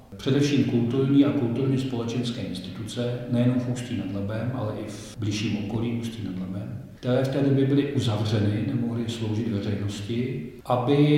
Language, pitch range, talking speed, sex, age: Czech, 110-125 Hz, 155 wpm, male, 40-59